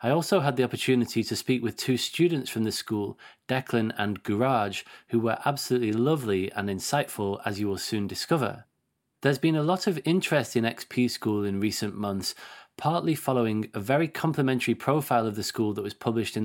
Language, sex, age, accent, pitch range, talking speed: English, male, 30-49, British, 110-140 Hz, 190 wpm